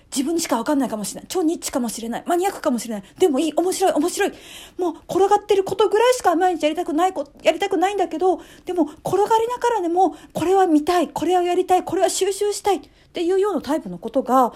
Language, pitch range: Japanese, 245-360 Hz